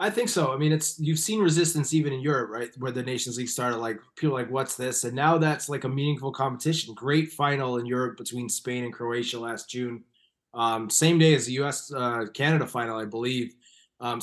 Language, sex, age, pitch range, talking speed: English, male, 20-39, 120-150 Hz, 215 wpm